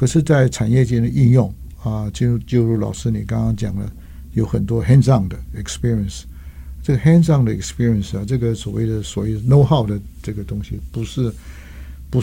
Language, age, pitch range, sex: Chinese, 60-79, 100-130 Hz, male